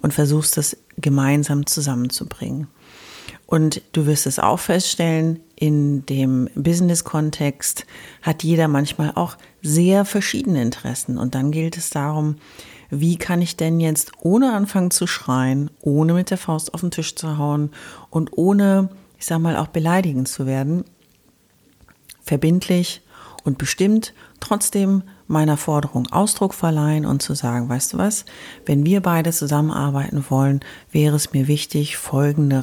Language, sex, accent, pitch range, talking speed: German, female, German, 140-175 Hz, 140 wpm